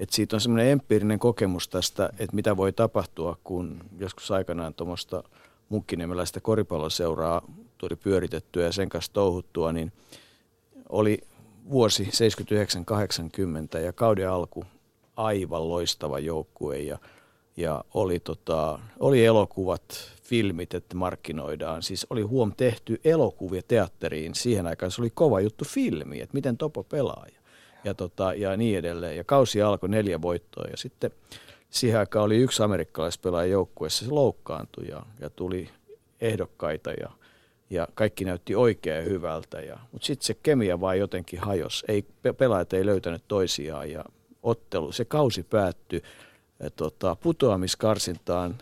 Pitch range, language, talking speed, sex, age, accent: 85-110 Hz, Finnish, 130 wpm, male, 50-69, native